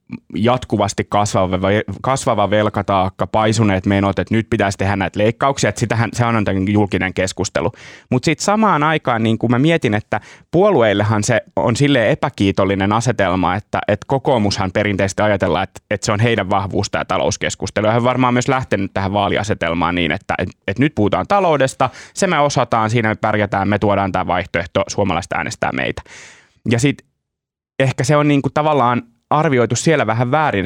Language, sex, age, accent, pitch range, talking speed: Finnish, male, 20-39, native, 100-135 Hz, 165 wpm